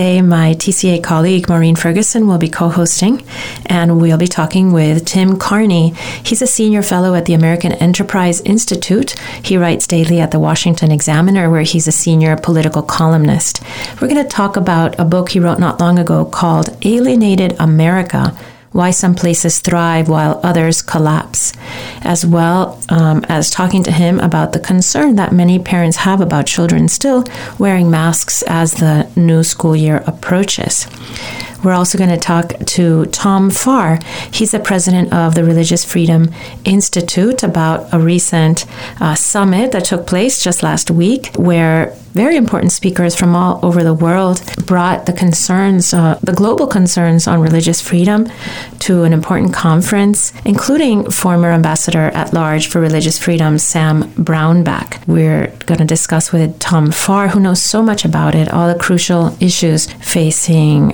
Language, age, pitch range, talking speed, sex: English, 40-59, 165-190 Hz, 160 wpm, female